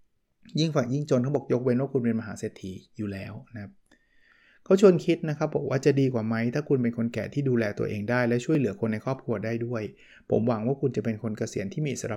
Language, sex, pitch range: Thai, male, 115-150 Hz